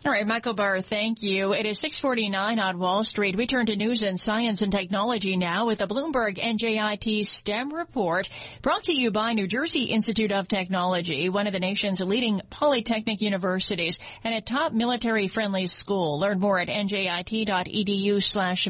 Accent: American